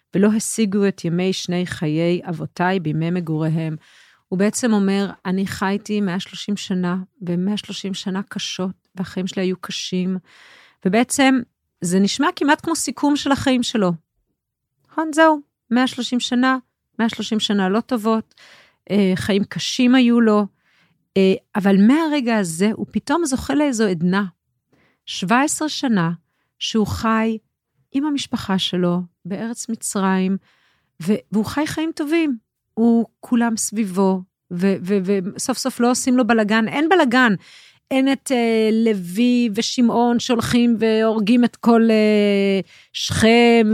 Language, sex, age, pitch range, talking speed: Hebrew, female, 40-59, 190-255 Hz, 125 wpm